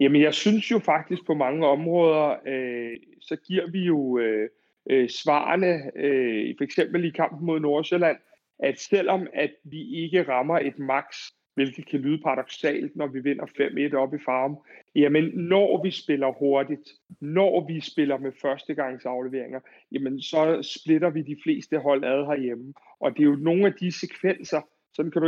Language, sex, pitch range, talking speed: Danish, male, 140-170 Hz, 170 wpm